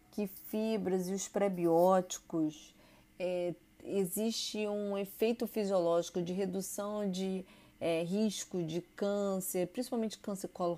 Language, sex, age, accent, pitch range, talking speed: Portuguese, female, 30-49, Brazilian, 185-235 Hz, 105 wpm